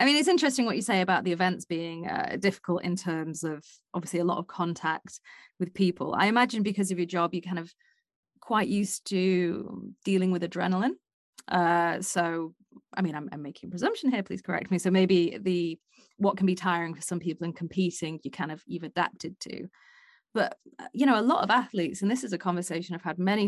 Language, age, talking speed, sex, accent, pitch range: English, 30-49, 215 wpm, female, British, 170-200 Hz